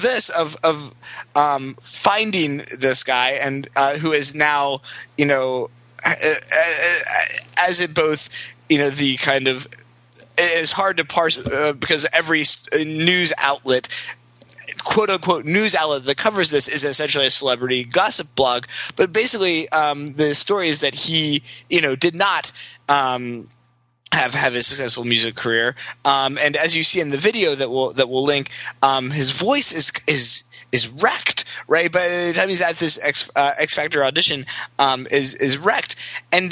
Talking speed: 165 wpm